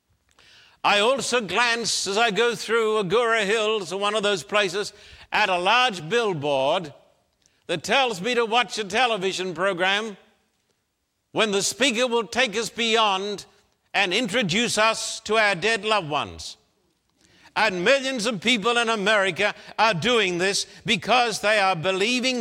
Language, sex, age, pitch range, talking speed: English, male, 60-79, 190-235 Hz, 145 wpm